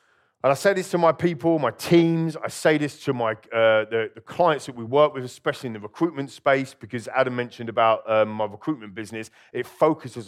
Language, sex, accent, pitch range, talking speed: English, male, British, 115-150 Hz, 215 wpm